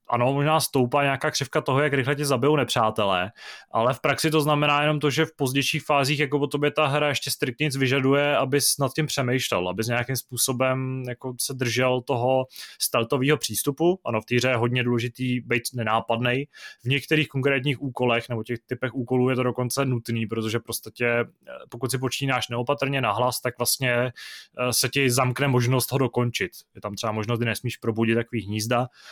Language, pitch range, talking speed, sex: Czech, 120-140 Hz, 180 wpm, male